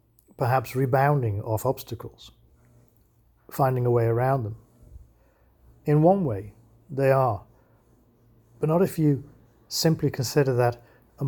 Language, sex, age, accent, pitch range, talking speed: English, male, 50-69, British, 115-135 Hz, 115 wpm